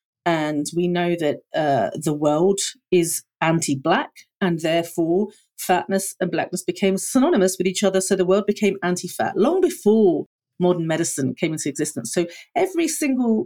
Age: 40-59